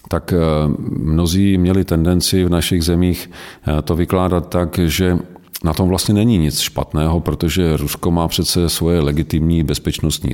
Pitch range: 75-95 Hz